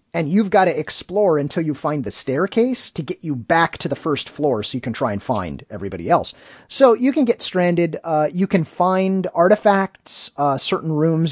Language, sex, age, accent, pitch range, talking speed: English, male, 30-49, American, 145-180 Hz, 205 wpm